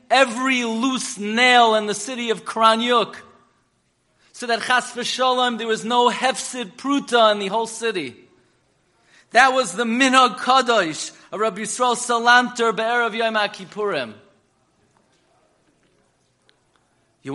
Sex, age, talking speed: male, 40-59, 115 wpm